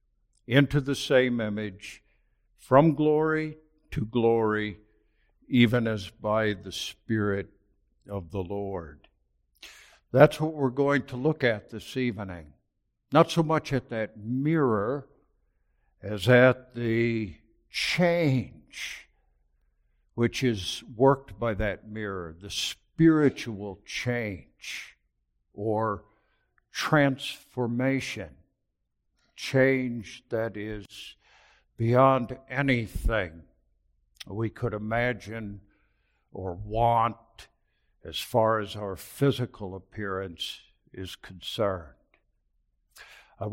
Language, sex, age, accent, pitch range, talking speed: English, male, 60-79, American, 100-130 Hz, 90 wpm